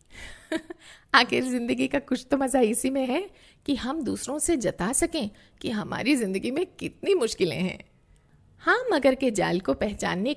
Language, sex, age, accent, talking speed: Hindi, female, 50-69, native, 160 wpm